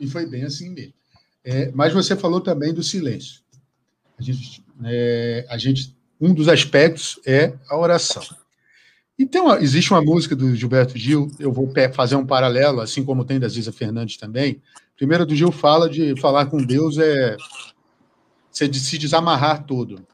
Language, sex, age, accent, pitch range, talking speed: Portuguese, male, 50-69, Brazilian, 125-155 Hz, 165 wpm